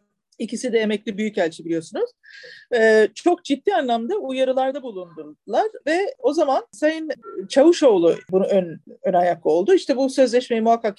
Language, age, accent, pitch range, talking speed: Turkish, 40-59, native, 225-340 Hz, 135 wpm